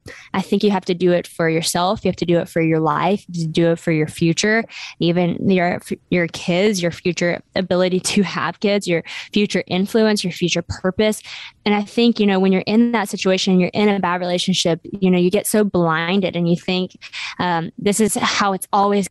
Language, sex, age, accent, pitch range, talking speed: English, female, 10-29, American, 180-205 Hz, 225 wpm